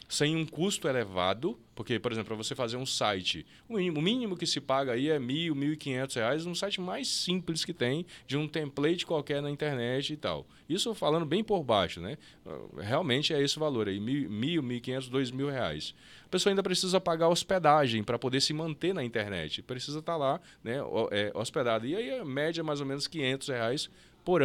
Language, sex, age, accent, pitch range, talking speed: Portuguese, male, 20-39, Brazilian, 115-160 Hz, 205 wpm